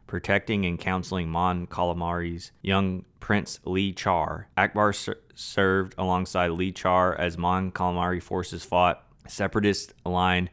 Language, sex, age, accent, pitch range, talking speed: English, male, 20-39, American, 85-100 Hz, 125 wpm